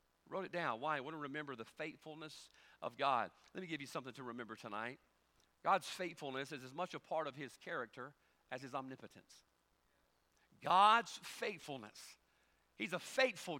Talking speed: 170 wpm